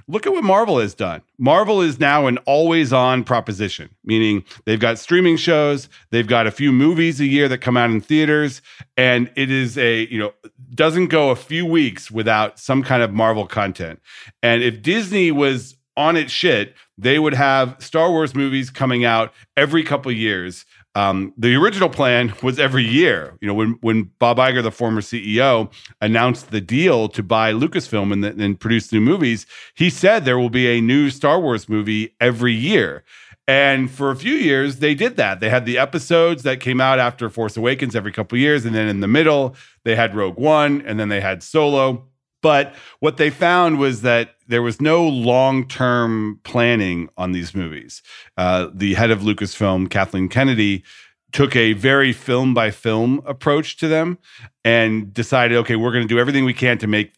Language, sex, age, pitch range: English, male, 40-59, 110-140 Hz